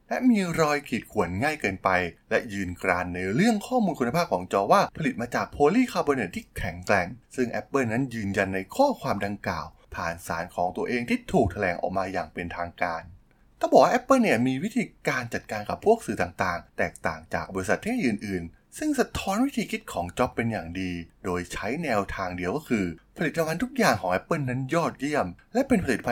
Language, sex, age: Thai, male, 20-39